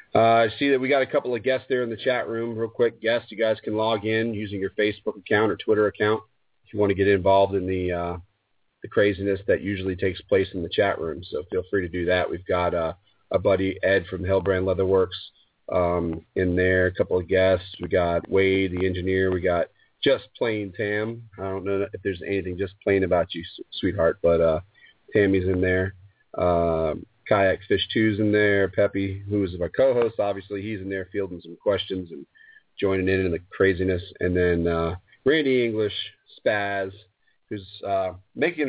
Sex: male